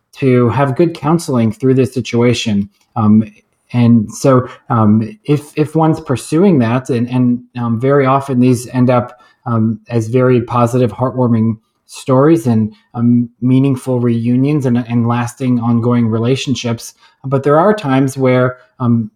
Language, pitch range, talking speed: English, 115-135 Hz, 140 wpm